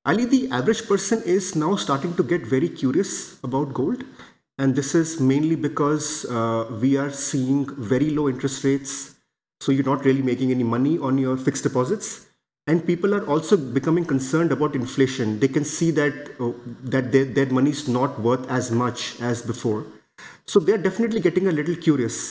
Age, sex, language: 30-49, male, English